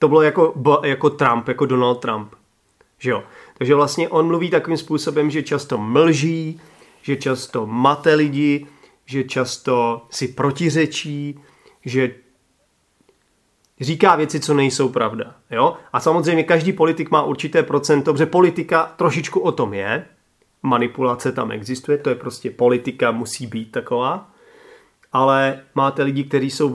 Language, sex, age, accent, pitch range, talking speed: Czech, male, 30-49, native, 130-160 Hz, 140 wpm